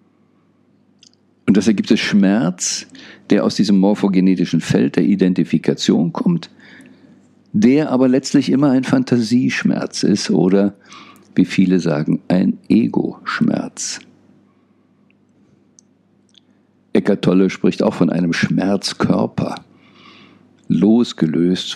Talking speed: 95 wpm